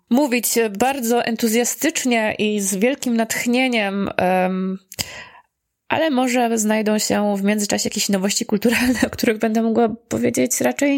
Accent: native